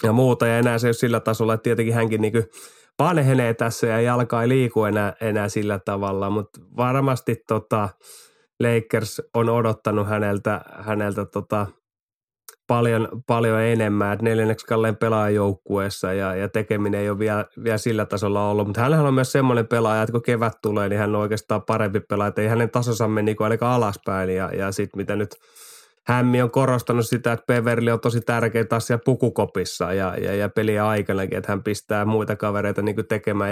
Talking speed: 175 wpm